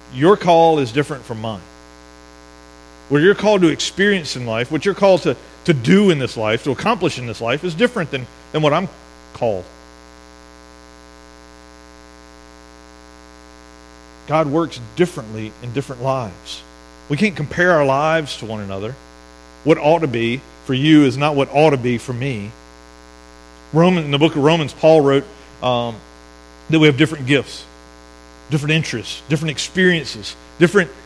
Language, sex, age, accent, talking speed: English, male, 50-69, American, 155 wpm